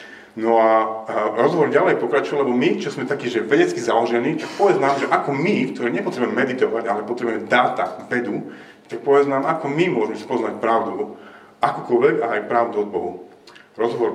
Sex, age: male, 40-59